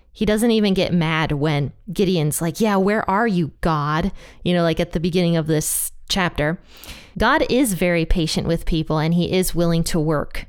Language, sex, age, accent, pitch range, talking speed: English, female, 20-39, American, 165-200 Hz, 195 wpm